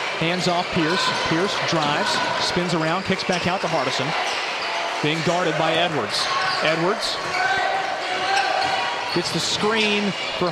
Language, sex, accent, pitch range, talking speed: English, male, American, 170-230 Hz, 120 wpm